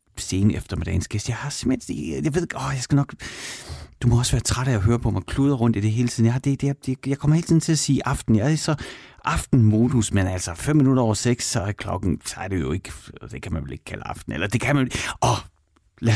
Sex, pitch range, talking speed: male, 100-135 Hz, 270 wpm